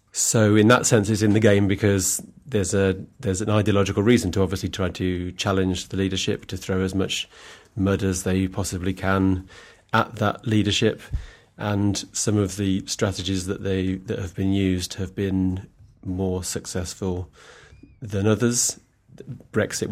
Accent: British